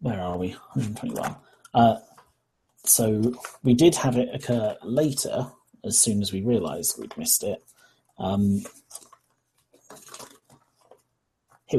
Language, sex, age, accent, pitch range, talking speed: English, male, 30-49, British, 105-125 Hz, 115 wpm